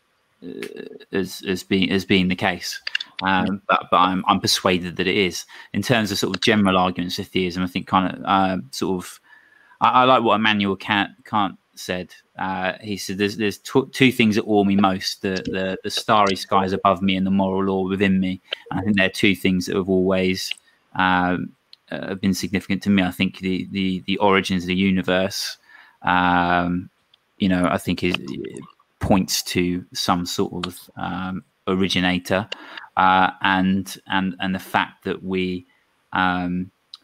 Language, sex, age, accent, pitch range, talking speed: English, male, 20-39, British, 90-95 Hz, 185 wpm